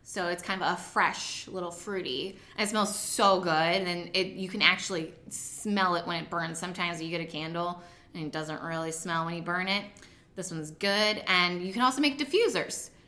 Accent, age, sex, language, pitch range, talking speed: American, 20-39, female, English, 185-230 Hz, 210 wpm